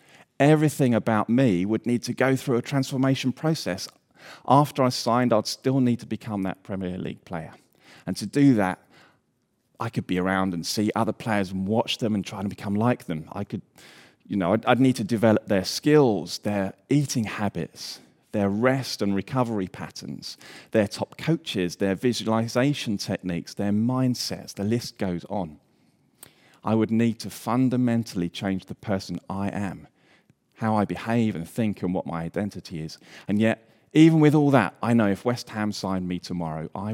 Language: English